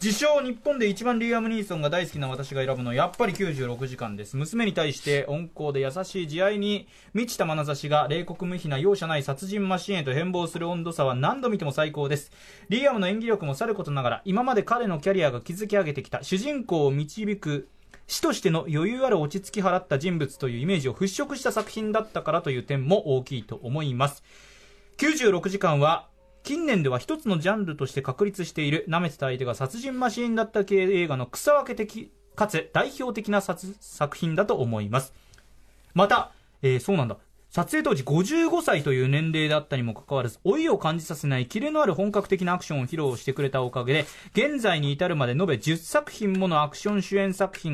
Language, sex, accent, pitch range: Japanese, male, native, 140-200 Hz